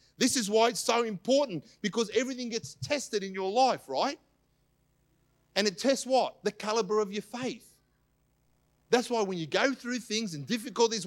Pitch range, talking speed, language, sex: 155-235 Hz, 175 wpm, English, male